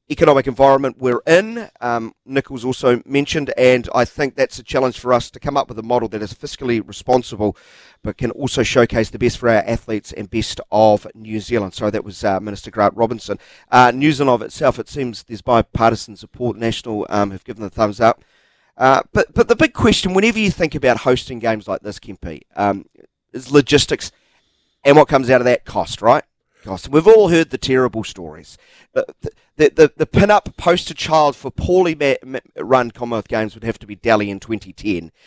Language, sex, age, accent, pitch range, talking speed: English, male, 40-59, Australian, 105-130 Hz, 200 wpm